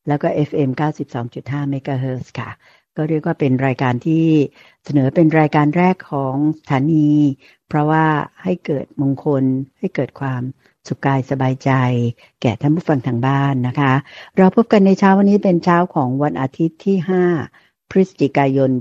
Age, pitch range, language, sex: 60-79, 130-160 Hz, Thai, female